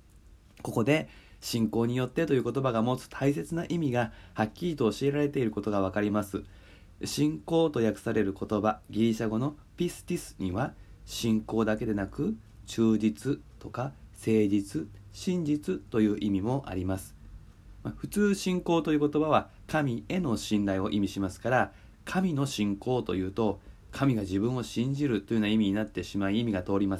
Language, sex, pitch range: Japanese, male, 100-150 Hz